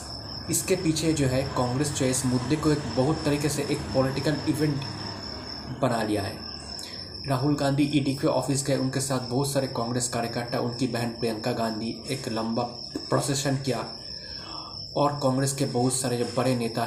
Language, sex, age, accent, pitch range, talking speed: Hindi, male, 20-39, native, 120-140 Hz, 165 wpm